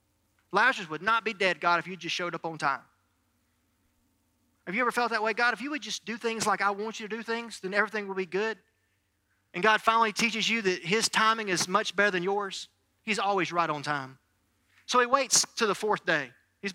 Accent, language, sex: American, English, male